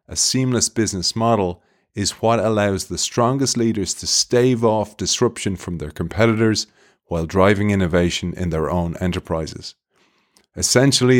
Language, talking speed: English, 135 wpm